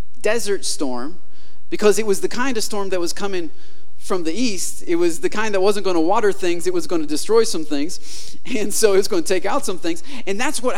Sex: male